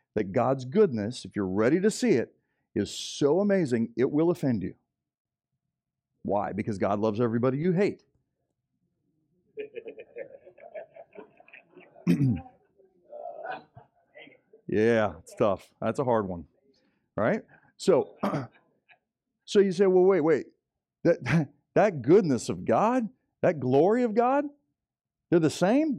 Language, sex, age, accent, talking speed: English, male, 50-69, American, 115 wpm